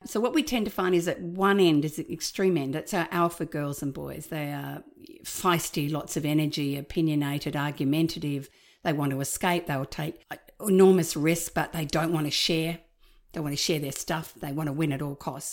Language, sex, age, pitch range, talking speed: English, female, 50-69, 155-185 Hz, 215 wpm